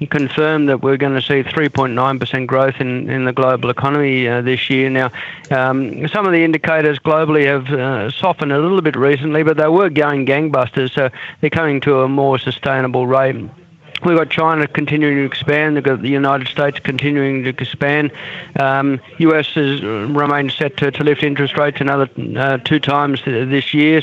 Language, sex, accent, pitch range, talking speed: English, male, Australian, 135-155 Hz, 180 wpm